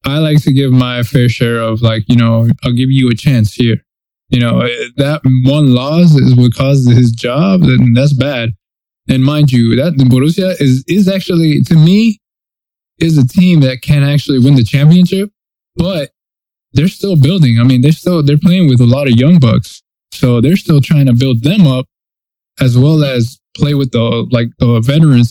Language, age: English, 20-39